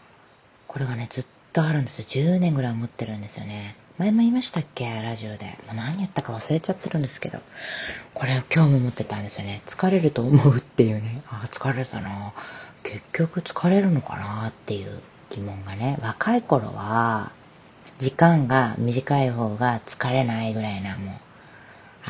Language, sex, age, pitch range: Japanese, female, 30-49, 110-150 Hz